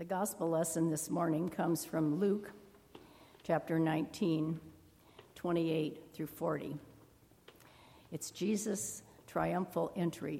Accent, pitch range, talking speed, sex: American, 160-215 Hz, 100 wpm, female